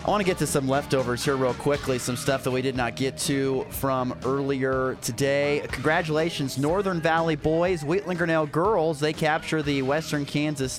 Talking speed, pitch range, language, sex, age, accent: 185 wpm, 105-140 Hz, English, male, 30-49, American